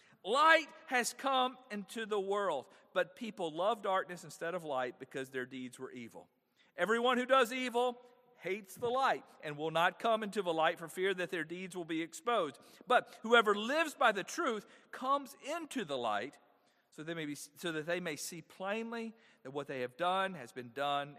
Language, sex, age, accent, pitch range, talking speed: English, male, 50-69, American, 155-230 Hz, 185 wpm